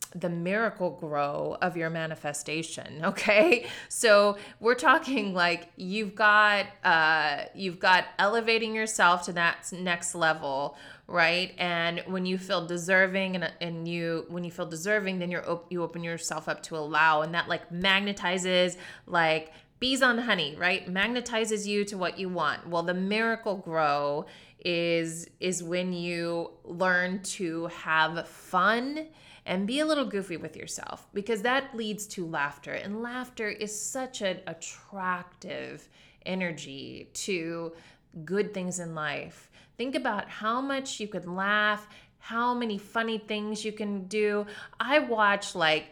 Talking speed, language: 145 wpm, English